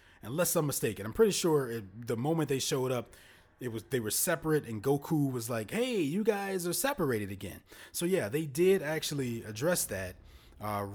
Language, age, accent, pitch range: English, 30-49, American, 110-155 Hz